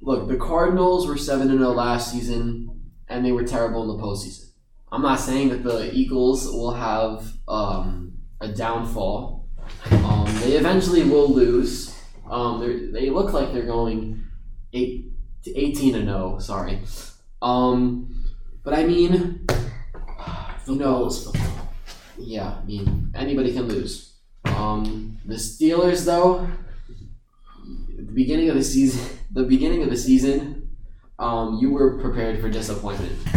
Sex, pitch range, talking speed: male, 100-130 Hz, 140 wpm